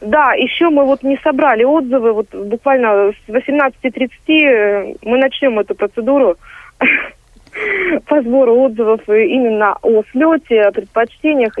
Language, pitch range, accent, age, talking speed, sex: Russian, 210-260 Hz, native, 30-49, 120 wpm, female